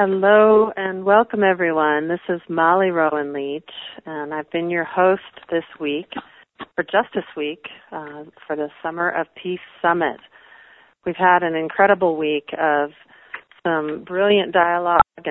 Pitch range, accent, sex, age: 155-180 Hz, American, female, 40-59